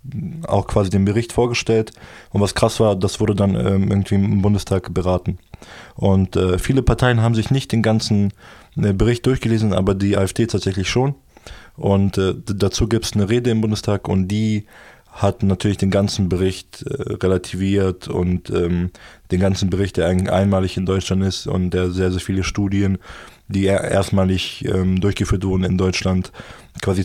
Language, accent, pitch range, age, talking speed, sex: German, German, 95-105 Hz, 20-39, 160 wpm, male